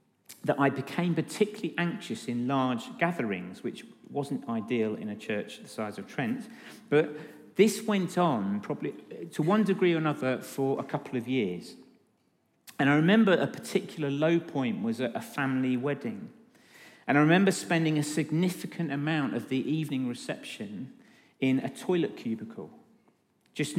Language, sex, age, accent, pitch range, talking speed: English, male, 40-59, British, 135-200 Hz, 155 wpm